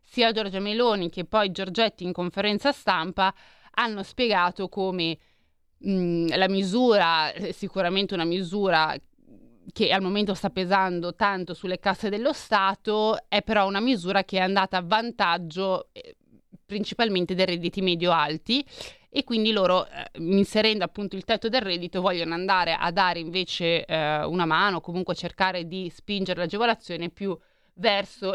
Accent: native